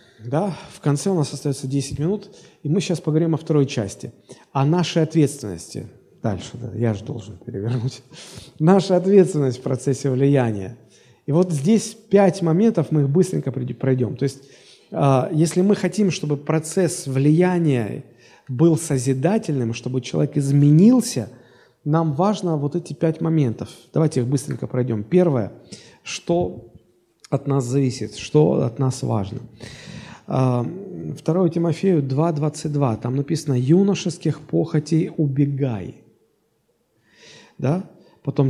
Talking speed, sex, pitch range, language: 130 wpm, male, 135-175 Hz, Russian